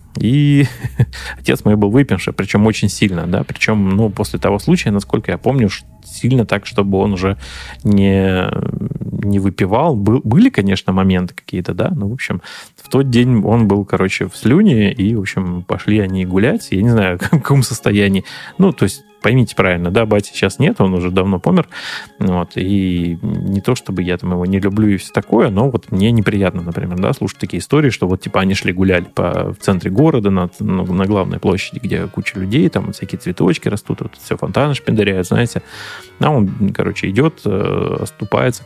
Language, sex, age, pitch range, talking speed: Russian, male, 20-39, 95-115 Hz, 185 wpm